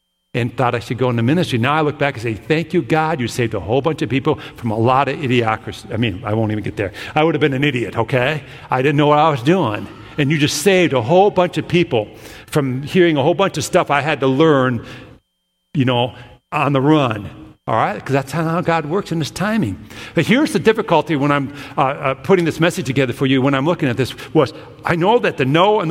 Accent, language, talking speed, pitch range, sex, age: American, English, 255 wpm, 125-165 Hz, male, 50-69